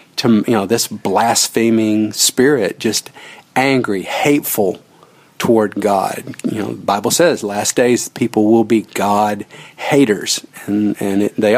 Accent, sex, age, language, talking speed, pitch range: American, male, 50-69, English, 140 wpm, 105-120 Hz